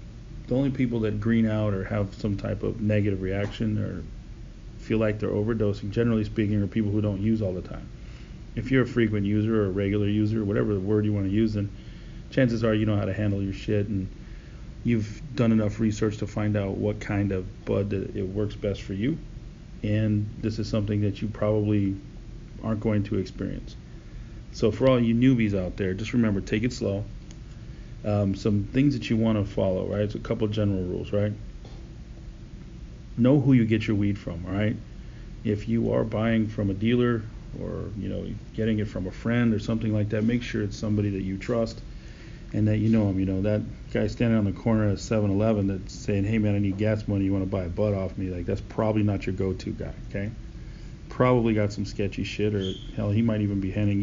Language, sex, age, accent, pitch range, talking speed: English, male, 40-59, American, 100-110 Hz, 220 wpm